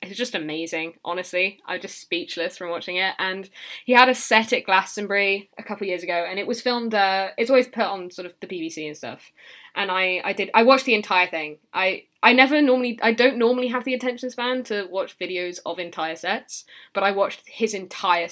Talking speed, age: 225 wpm, 10-29